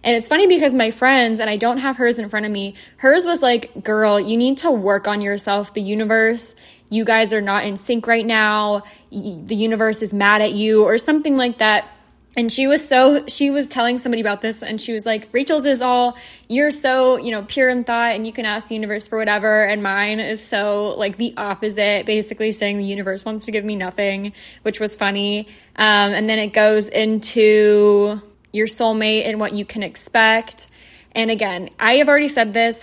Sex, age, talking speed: female, 10-29, 210 wpm